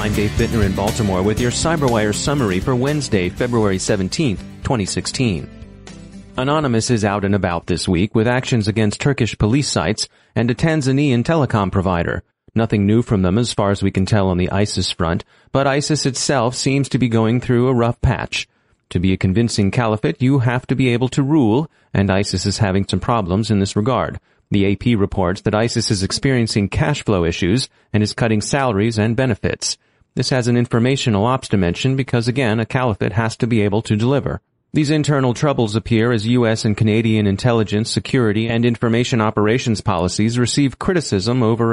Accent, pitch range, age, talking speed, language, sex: American, 100-125 Hz, 30-49, 185 wpm, English, male